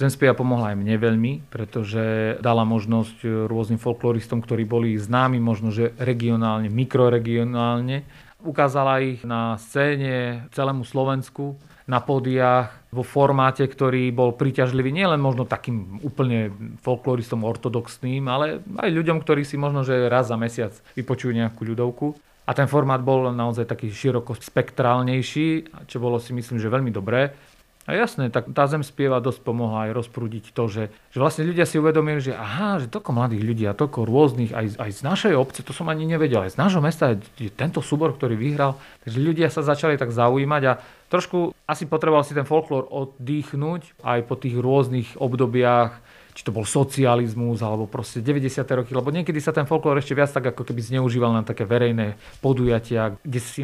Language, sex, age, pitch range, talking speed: Slovak, male, 40-59, 115-140 Hz, 170 wpm